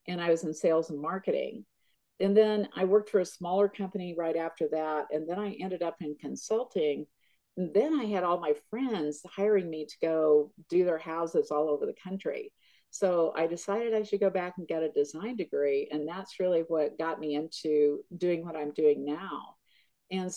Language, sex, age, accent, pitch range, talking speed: English, female, 50-69, American, 155-205 Hz, 195 wpm